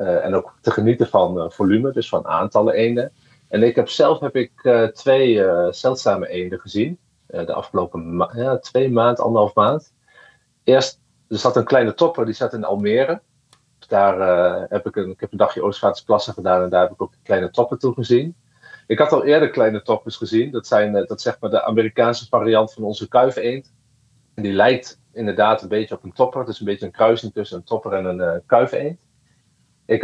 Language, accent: Dutch, Dutch